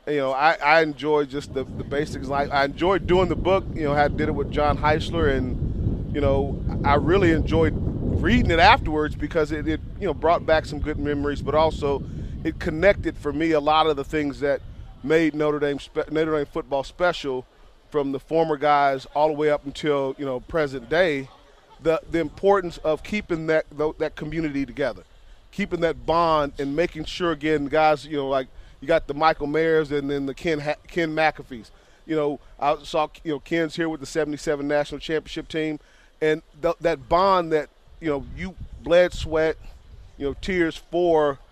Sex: male